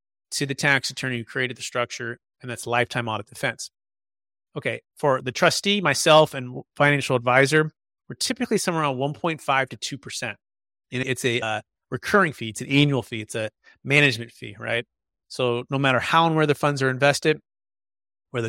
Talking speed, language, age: 175 wpm, English, 30-49